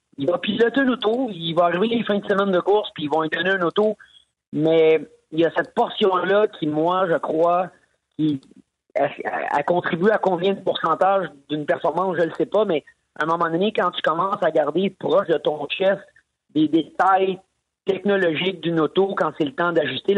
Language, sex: French, male